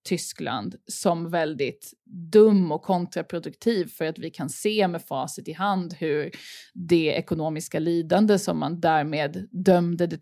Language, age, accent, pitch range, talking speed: Swedish, 20-39, native, 175-215 Hz, 140 wpm